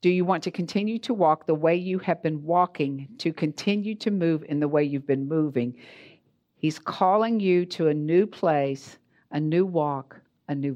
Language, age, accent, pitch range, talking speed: English, 50-69, American, 145-180 Hz, 195 wpm